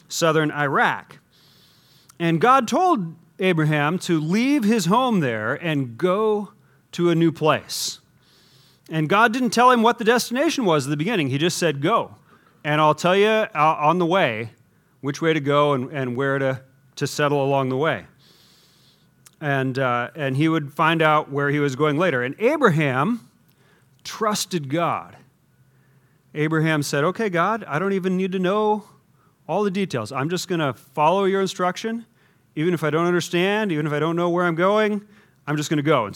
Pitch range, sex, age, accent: 145-185 Hz, male, 40-59, American